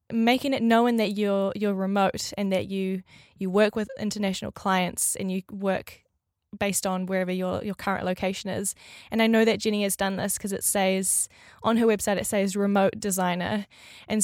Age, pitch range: 10-29, 195-225 Hz